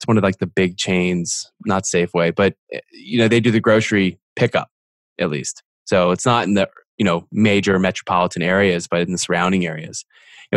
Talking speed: 205 wpm